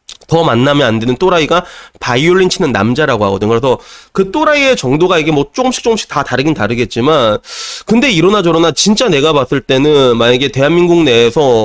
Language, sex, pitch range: Korean, male, 120-190 Hz